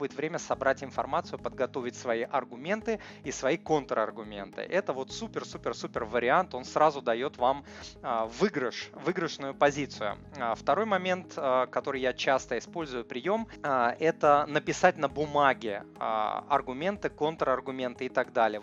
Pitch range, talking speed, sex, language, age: 125-155 Hz, 115 wpm, male, Russian, 20-39